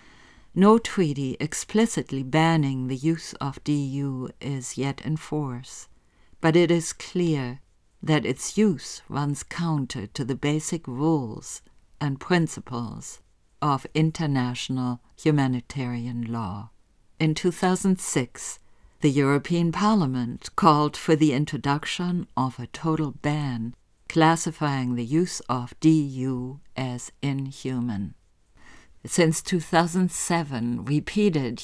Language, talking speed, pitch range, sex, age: English, 100 wpm, 125-160 Hz, female, 50-69